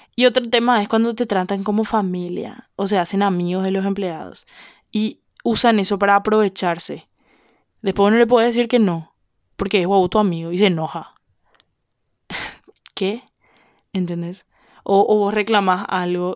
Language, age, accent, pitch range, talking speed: Spanish, 20-39, Colombian, 185-230 Hz, 160 wpm